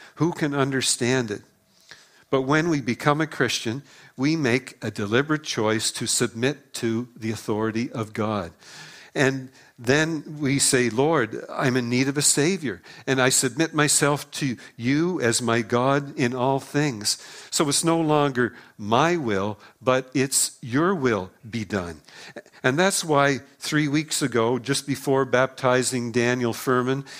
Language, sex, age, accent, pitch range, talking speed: English, male, 50-69, American, 120-140 Hz, 150 wpm